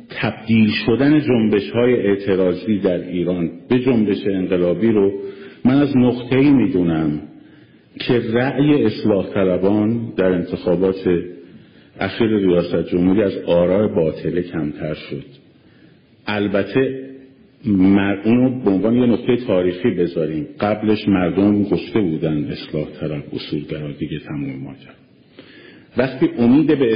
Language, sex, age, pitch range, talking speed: Persian, male, 50-69, 90-120 Hz, 110 wpm